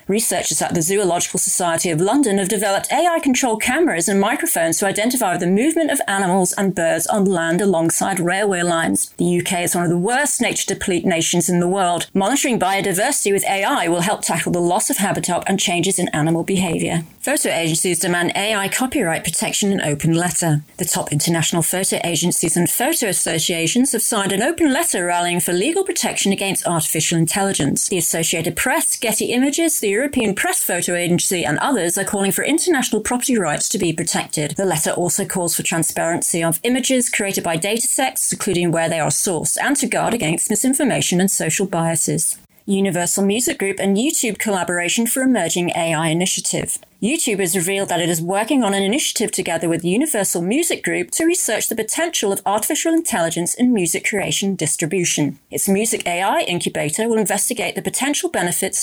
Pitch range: 175-225 Hz